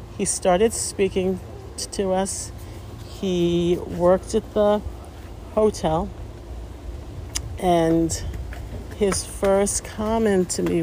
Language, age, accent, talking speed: English, 50-69, American, 95 wpm